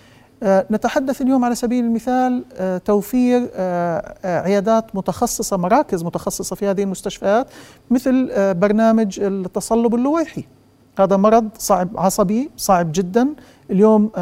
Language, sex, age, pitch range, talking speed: Arabic, male, 50-69, 185-230 Hz, 100 wpm